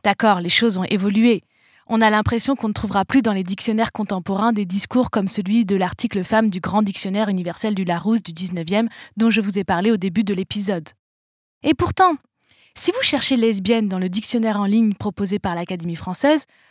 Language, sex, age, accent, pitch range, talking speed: French, female, 20-39, French, 195-245 Hz, 210 wpm